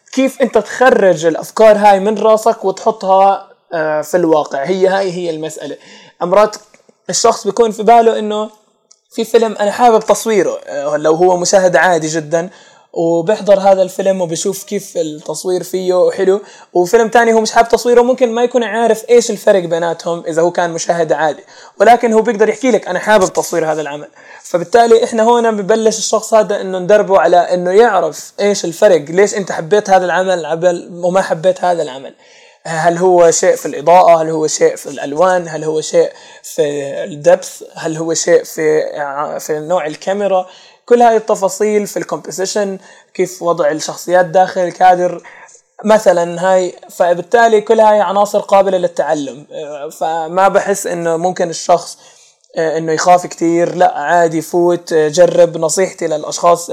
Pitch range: 170-215 Hz